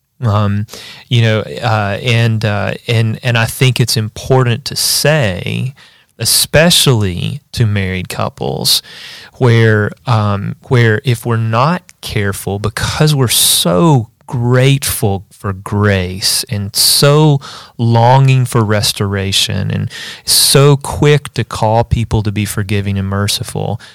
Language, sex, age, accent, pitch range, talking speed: English, male, 30-49, American, 105-125 Hz, 120 wpm